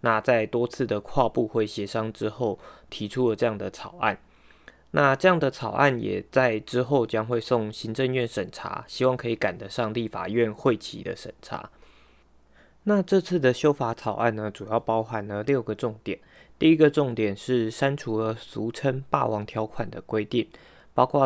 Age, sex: 20-39, male